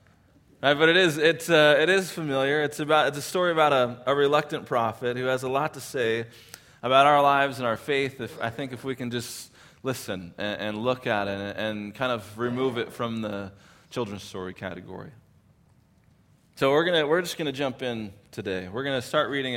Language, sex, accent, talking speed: English, male, American, 195 wpm